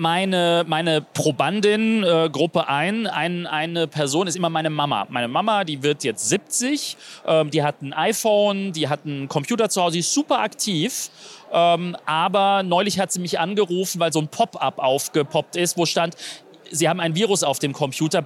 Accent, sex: German, male